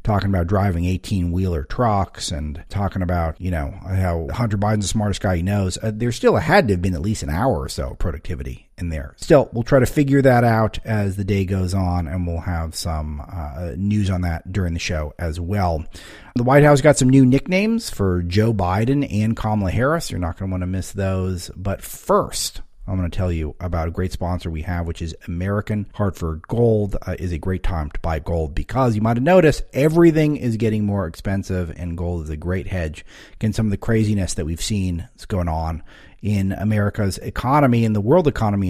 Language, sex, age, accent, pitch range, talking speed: English, male, 40-59, American, 85-110 Hz, 215 wpm